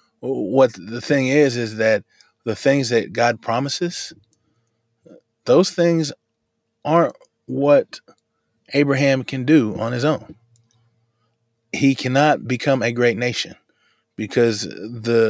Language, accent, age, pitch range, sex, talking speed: English, American, 20-39, 110-130 Hz, male, 115 wpm